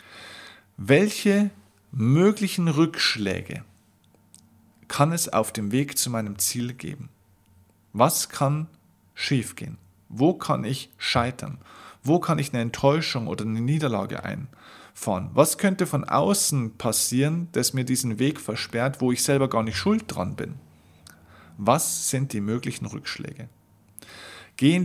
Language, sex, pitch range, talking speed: German, male, 105-150 Hz, 125 wpm